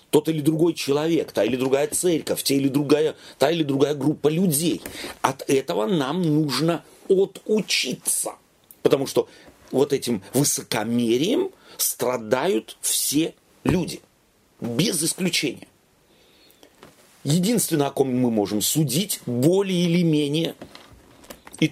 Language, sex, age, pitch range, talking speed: Russian, male, 40-59, 125-165 Hz, 115 wpm